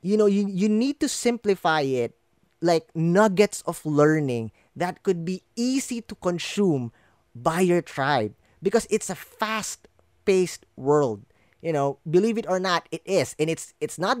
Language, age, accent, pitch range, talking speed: English, 20-39, Filipino, 155-215 Hz, 160 wpm